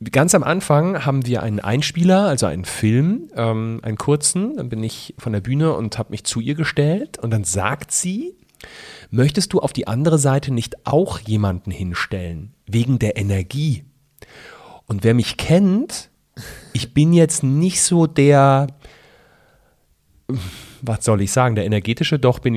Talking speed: 160 wpm